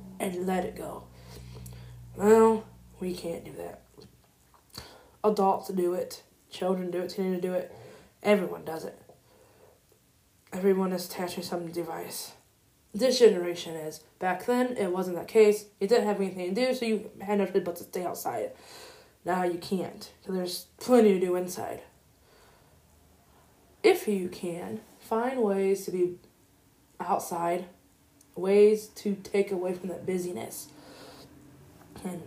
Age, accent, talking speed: 20-39, American, 140 wpm